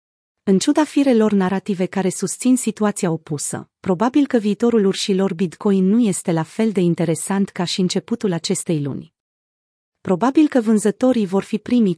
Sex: female